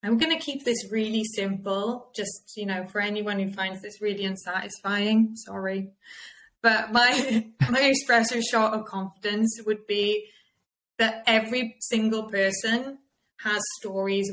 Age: 20-39